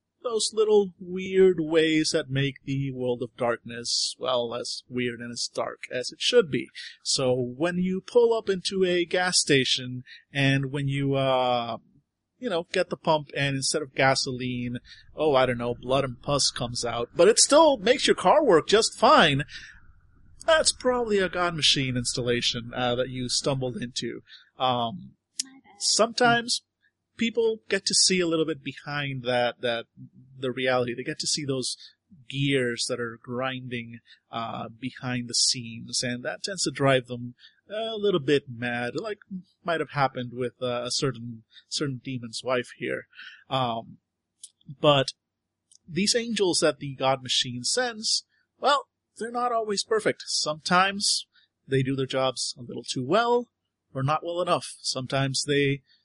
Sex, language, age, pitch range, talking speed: male, English, 30-49, 125-185 Hz, 160 wpm